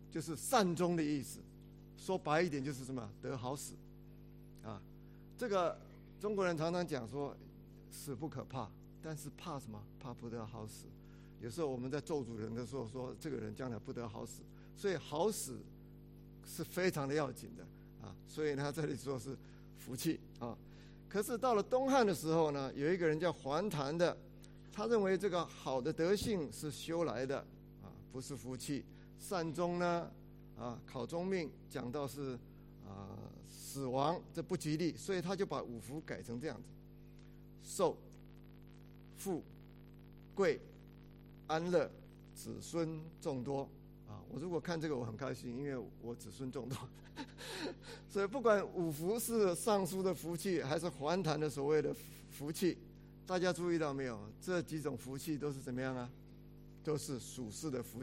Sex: male